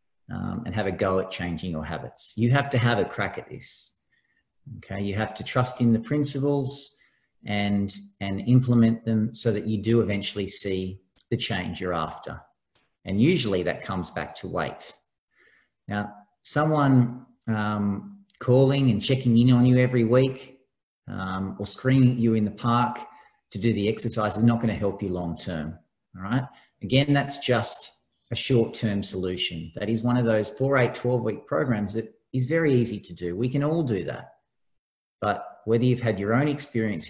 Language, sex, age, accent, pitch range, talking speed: English, male, 40-59, Australian, 100-125 Hz, 180 wpm